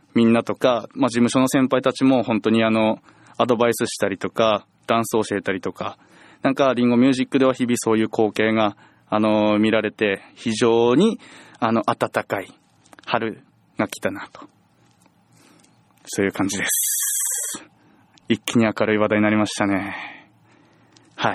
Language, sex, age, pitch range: Japanese, male, 20-39, 115-185 Hz